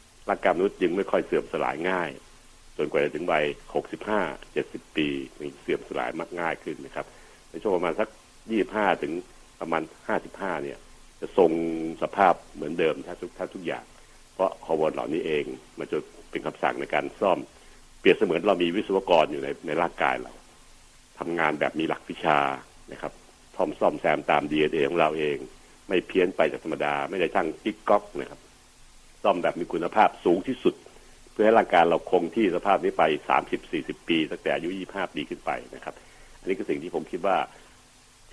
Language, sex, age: Thai, male, 60-79